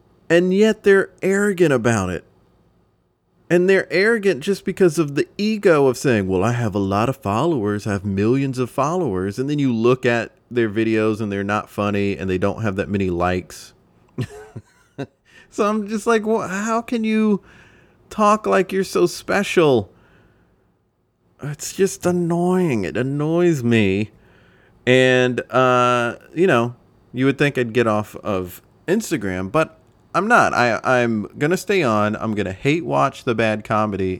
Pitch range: 105-170 Hz